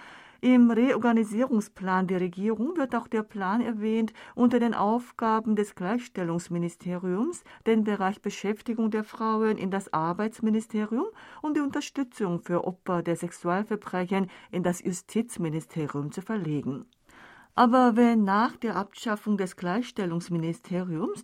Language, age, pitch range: German, 40-59, 180-230 Hz